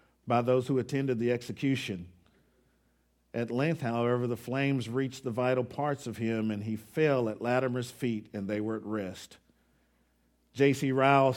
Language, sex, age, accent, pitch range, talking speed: English, male, 50-69, American, 120-165 Hz, 160 wpm